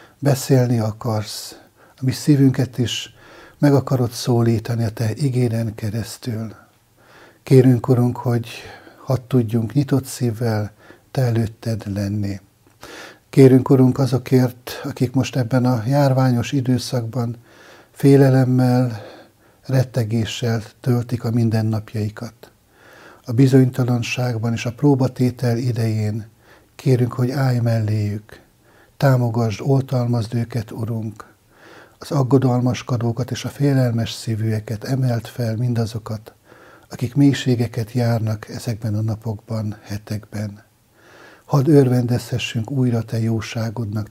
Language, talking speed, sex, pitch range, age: Hungarian, 95 wpm, male, 110-130 Hz, 60-79